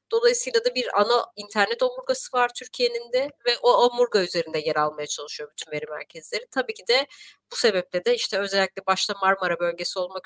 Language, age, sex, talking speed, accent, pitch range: Turkish, 30-49, female, 180 wpm, native, 185-245 Hz